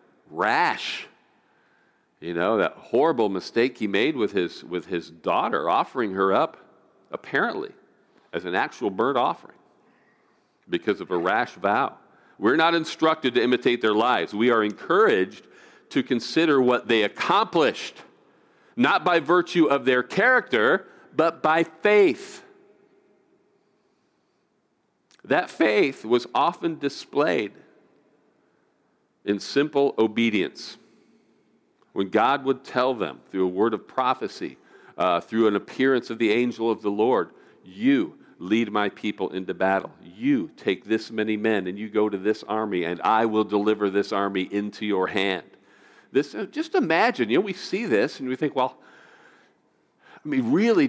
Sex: male